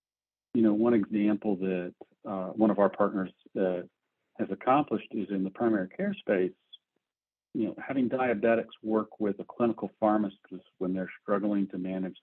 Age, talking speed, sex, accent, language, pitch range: 50-69, 160 wpm, male, American, English, 95-105 Hz